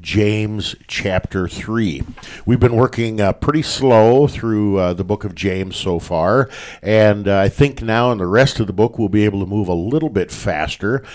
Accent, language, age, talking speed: American, English, 50-69, 200 wpm